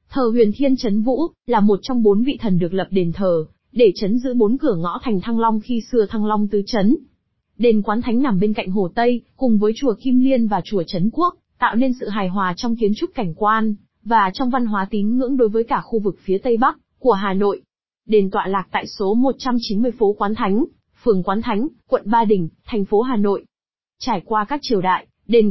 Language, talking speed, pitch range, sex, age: Vietnamese, 235 wpm, 200-250 Hz, female, 20-39